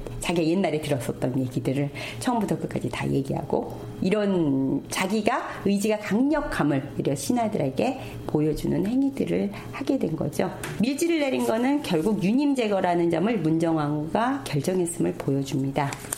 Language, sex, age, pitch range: Korean, female, 40-59, 150-240 Hz